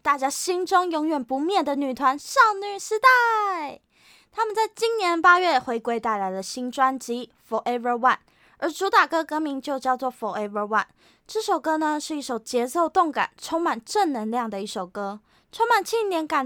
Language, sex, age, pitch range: Chinese, female, 20-39, 225-345 Hz